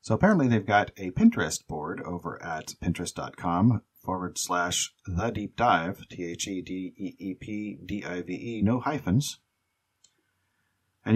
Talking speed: 155 wpm